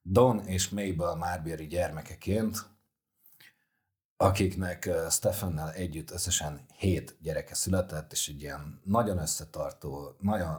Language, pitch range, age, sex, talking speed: Hungarian, 80-100 Hz, 40-59, male, 100 wpm